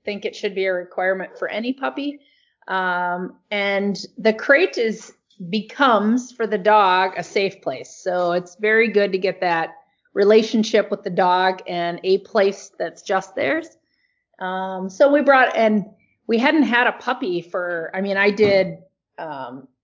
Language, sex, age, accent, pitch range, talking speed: English, female, 30-49, American, 185-220 Hz, 165 wpm